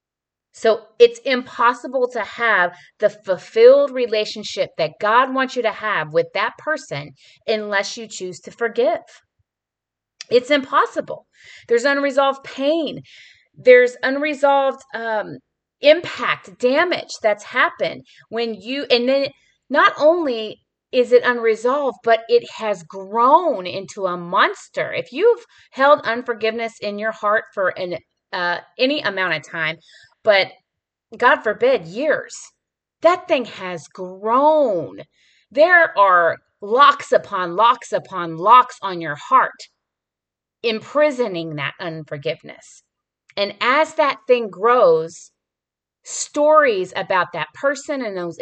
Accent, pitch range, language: American, 195-280 Hz, English